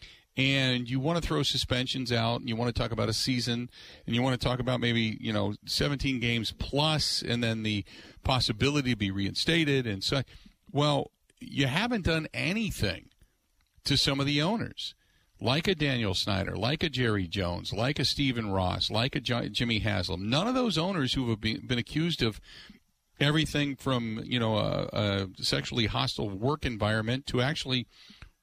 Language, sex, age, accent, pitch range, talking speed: English, male, 50-69, American, 105-145 Hz, 175 wpm